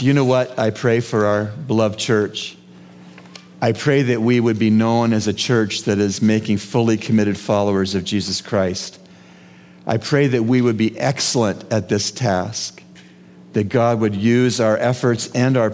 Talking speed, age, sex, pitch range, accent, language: 175 wpm, 50-69, male, 95-120 Hz, American, English